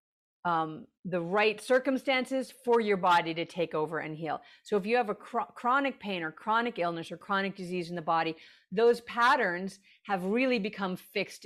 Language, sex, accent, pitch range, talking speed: English, female, American, 190-245 Hz, 180 wpm